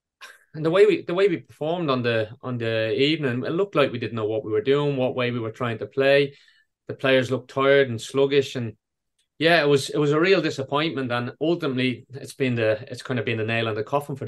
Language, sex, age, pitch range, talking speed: English, male, 30-49, 115-140 Hz, 250 wpm